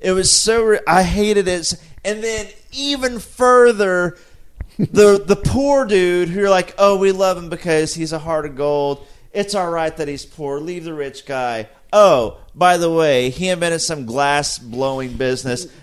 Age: 30-49